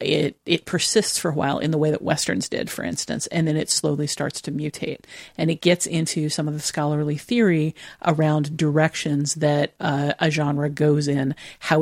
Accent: American